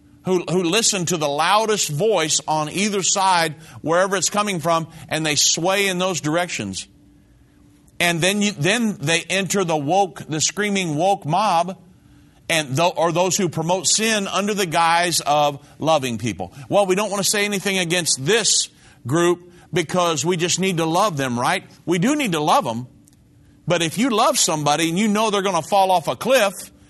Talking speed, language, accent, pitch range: 185 wpm, English, American, 145-195 Hz